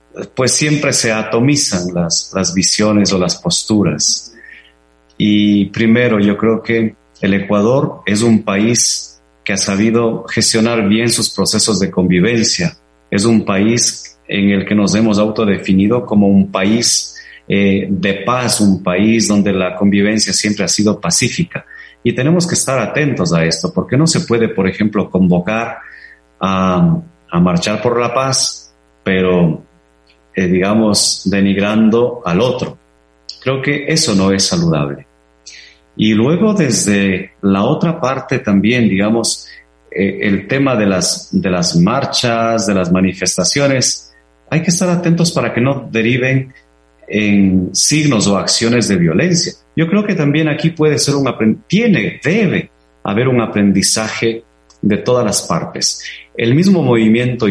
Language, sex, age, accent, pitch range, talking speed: Spanish, male, 30-49, Mexican, 95-125 Hz, 145 wpm